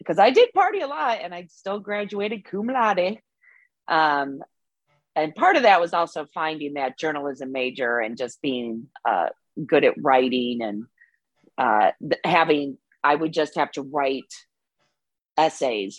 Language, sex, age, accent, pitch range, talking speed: English, female, 40-59, American, 140-185 Hz, 150 wpm